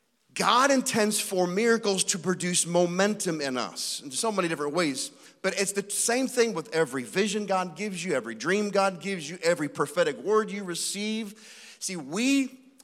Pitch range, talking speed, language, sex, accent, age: 155-210 Hz, 175 wpm, English, male, American, 40-59